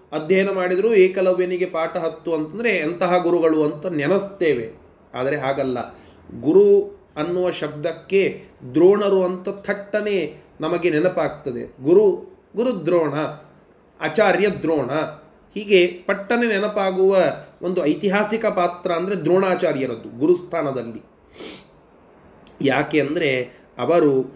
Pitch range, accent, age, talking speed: 155-205 Hz, native, 30-49, 90 wpm